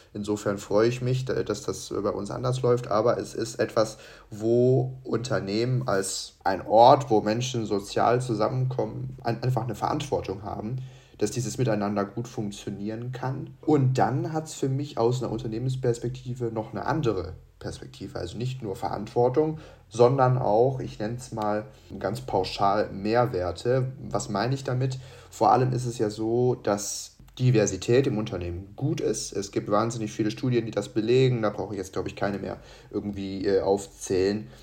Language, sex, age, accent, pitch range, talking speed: German, male, 30-49, German, 100-125 Hz, 165 wpm